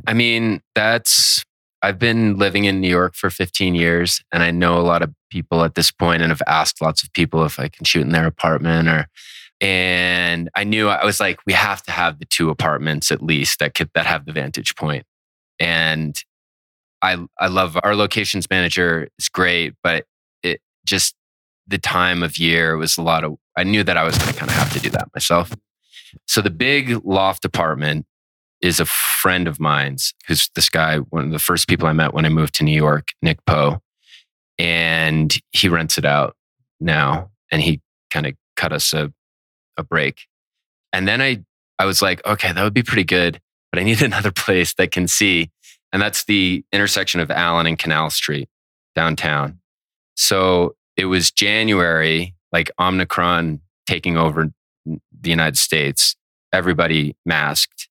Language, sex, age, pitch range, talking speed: English, male, 20-39, 80-95 Hz, 185 wpm